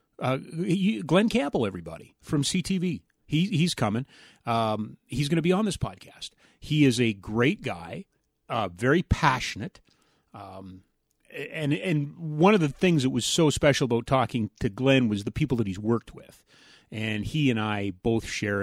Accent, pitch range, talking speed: American, 105-150 Hz, 170 wpm